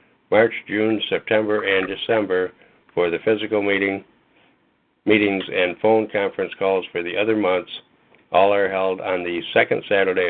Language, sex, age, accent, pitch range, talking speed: English, male, 60-79, American, 90-105 Hz, 145 wpm